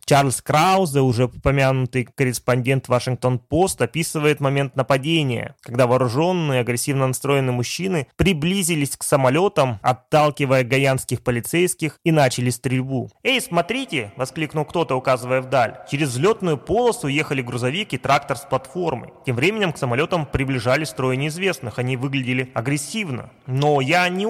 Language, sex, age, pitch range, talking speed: Russian, male, 20-39, 130-175 Hz, 130 wpm